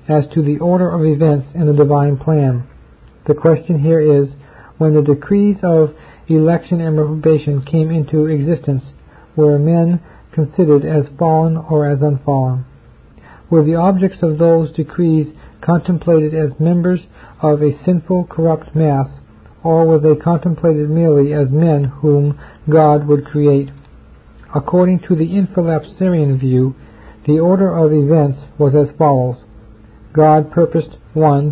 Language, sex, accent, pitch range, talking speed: English, male, American, 140-160 Hz, 135 wpm